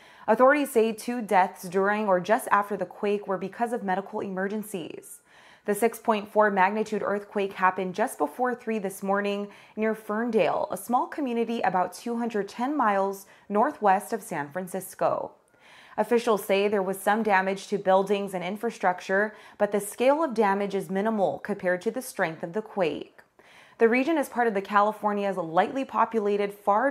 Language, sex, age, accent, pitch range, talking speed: English, female, 20-39, American, 190-225 Hz, 160 wpm